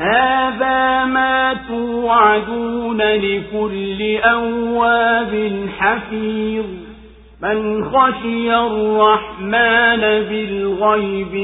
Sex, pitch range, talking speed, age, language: male, 210-240 Hz, 50 wpm, 50-69, Swahili